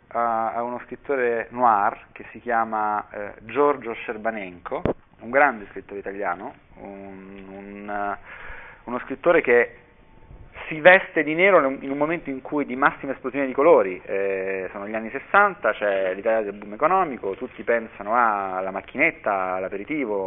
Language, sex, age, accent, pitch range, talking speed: Italian, male, 30-49, native, 100-140 Hz, 135 wpm